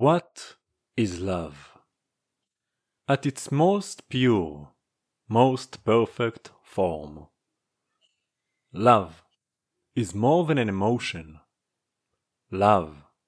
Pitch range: 100-130 Hz